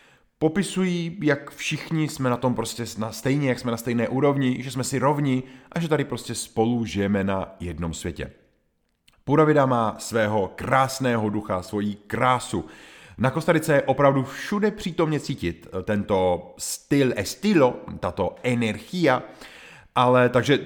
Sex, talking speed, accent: male, 135 wpm, native